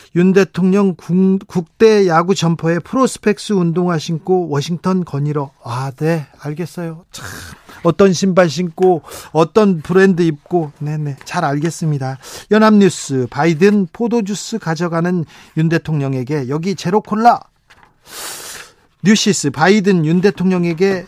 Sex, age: male, 40-59